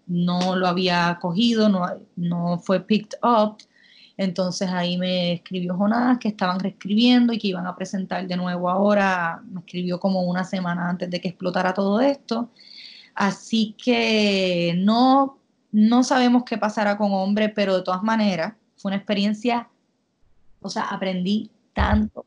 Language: Spanish